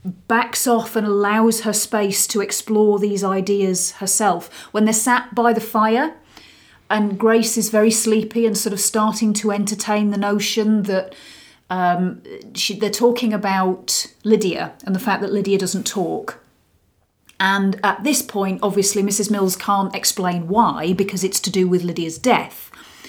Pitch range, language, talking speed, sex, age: 200-260 Hz, English, 155 wpm, female, 30-49